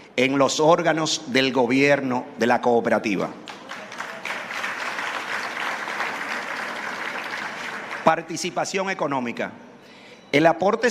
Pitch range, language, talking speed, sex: 145-185 Hz, Spanish, 65 wpm, male